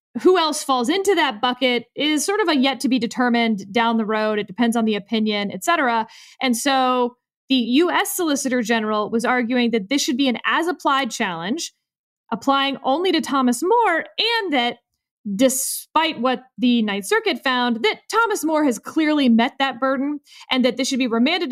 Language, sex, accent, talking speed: English, female, American, 175 wpm